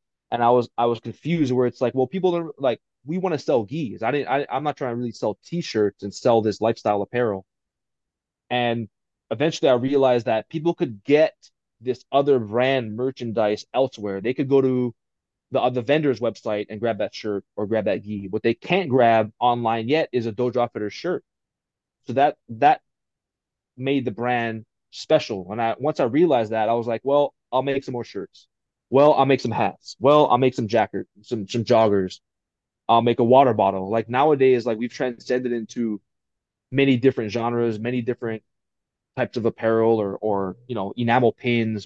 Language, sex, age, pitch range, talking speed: English, male, 20-39, 110-130 Hz, 190 wpm